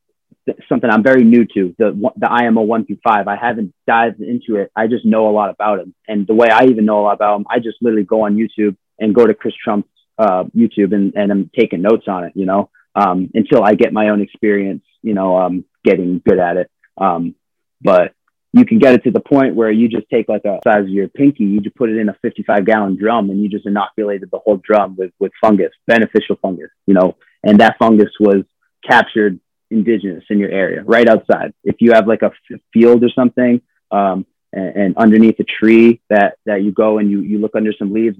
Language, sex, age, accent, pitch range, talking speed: English, male, 30-49, American, 100-115 Hz, 235 wpm